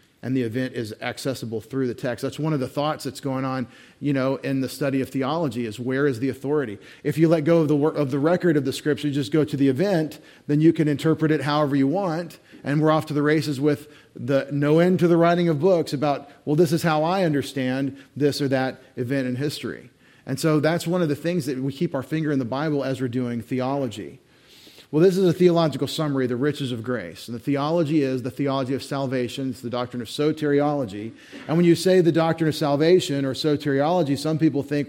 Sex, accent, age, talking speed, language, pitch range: male, American, 40-59, 235 wpm, English, 130-155 Hz